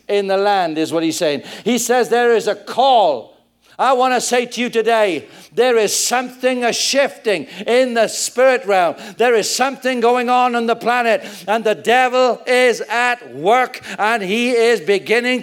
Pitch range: 220-260 Hz